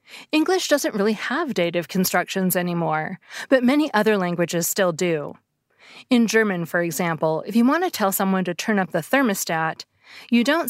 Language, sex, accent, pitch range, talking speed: English, female, American, 185-245 Hz, 170 wpm